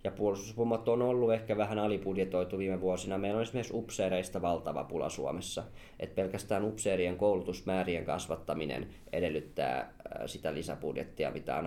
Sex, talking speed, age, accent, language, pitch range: male, 135 wpm, 20-39, native, Finnish, 90-105 Hz